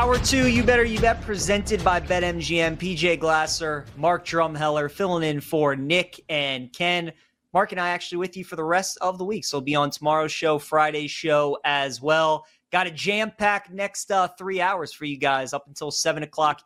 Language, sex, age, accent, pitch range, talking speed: English, male, 20-39, American, 150-190 Hz, 200 wpm